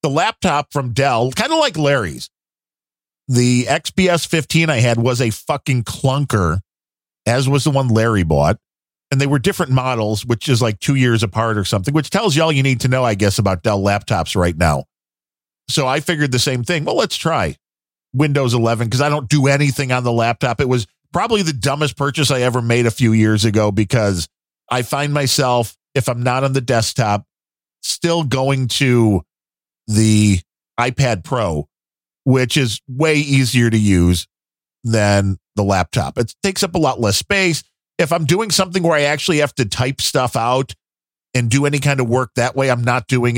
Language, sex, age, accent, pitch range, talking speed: English, male, 40-59, American, 100-140 Hz, 190 wpm